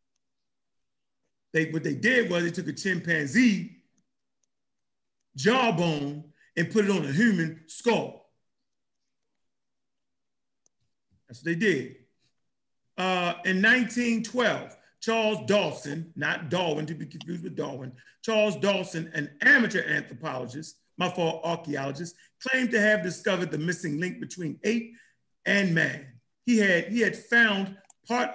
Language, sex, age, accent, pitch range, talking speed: English, male, 40-59, American, 165-225 Hz, 120 wpm